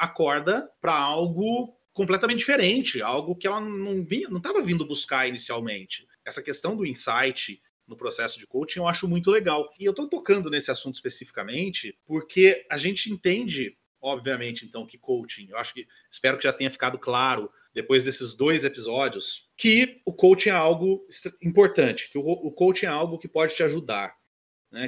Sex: male